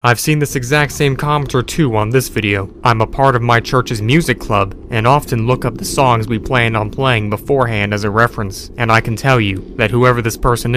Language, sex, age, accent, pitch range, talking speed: English, male, 30-49, American, 115-145 Hz, 230 wpm